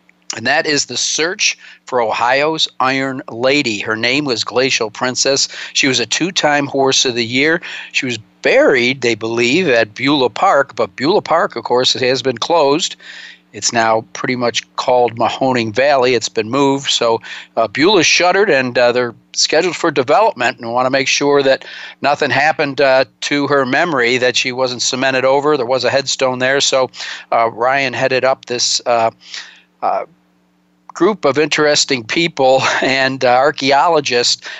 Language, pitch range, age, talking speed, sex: English, 120-145 Hz, 50-69, 165 wpm, male